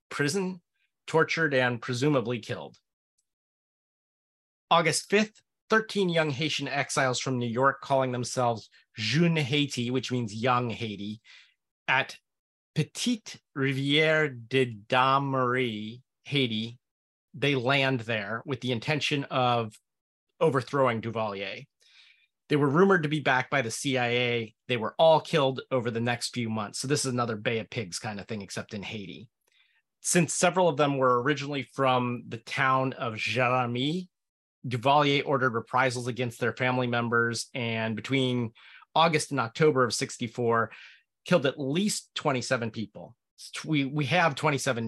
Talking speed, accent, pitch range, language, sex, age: 140 wpm, American, 115-145 Hz, English, male, 30-49